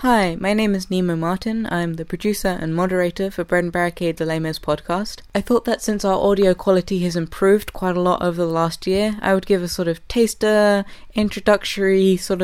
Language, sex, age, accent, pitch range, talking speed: English, female, 20-39, British, 170-200 Hz, 210 wpm